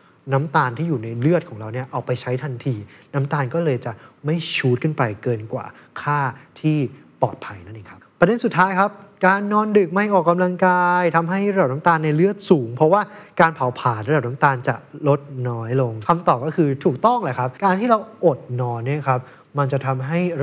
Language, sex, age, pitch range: Thai, male, 20-39, 125-165 Hz